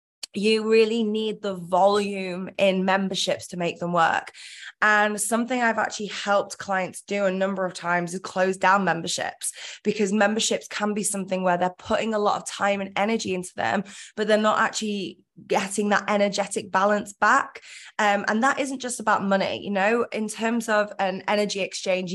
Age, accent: 20-39, British